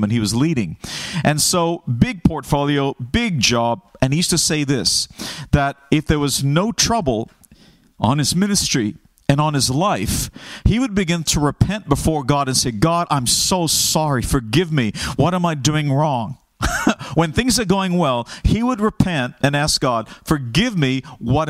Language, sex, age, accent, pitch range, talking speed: English, male, 40-59, American, 125-170 Hz, 175 wpm